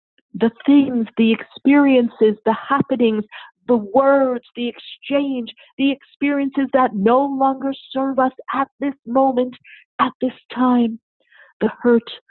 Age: 50-69